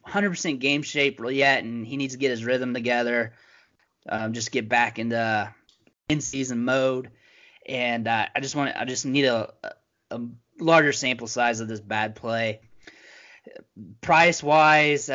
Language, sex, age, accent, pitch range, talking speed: English, male, 20-39, American, 115-140 Hz, 145 wpm